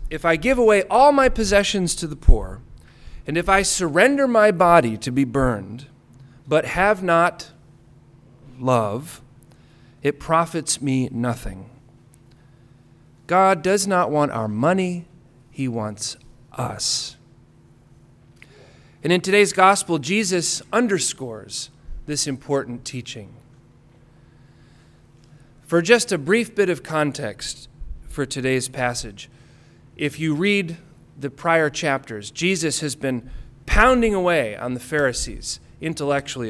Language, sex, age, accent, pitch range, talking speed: English, male, 40-59, American, 130-175 Hz, 115 wpm